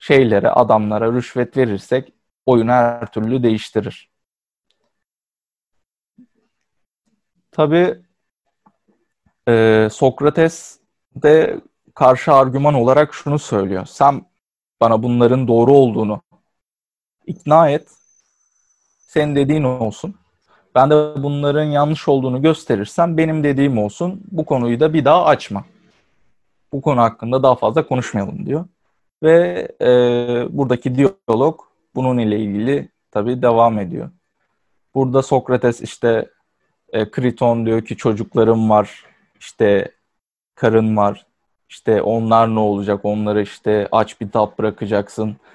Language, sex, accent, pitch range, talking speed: Turkish, male, native, 110-145 Hz, 105 wpm